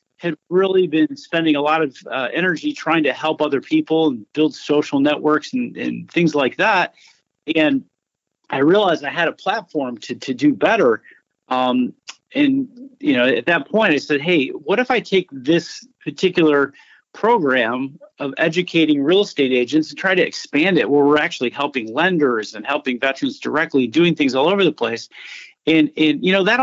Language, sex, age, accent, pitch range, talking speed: English, male, 40-59, American, 145-225 Hz, 185 wpm